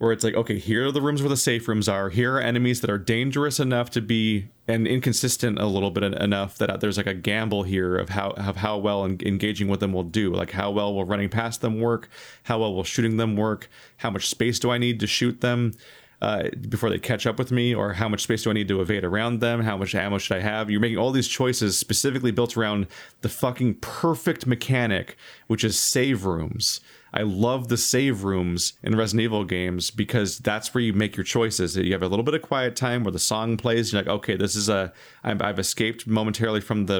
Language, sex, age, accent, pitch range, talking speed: English, male, 30-49, American, 100-120 Hz, 240 wpm